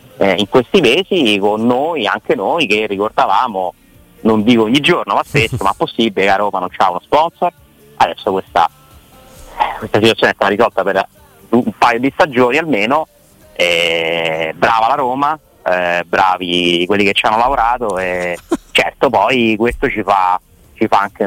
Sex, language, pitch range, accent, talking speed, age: male, Italian, 95-125 Hz, native, 165 wpm, 30-49